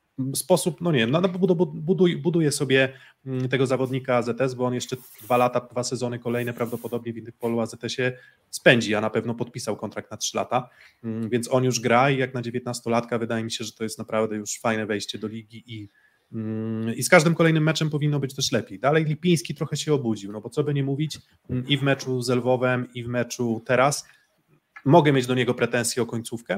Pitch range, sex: 115-140 Hz, male